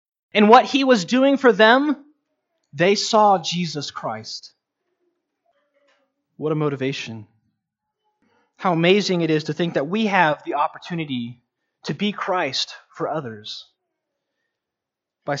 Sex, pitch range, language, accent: male, 145-220 Hz, English, American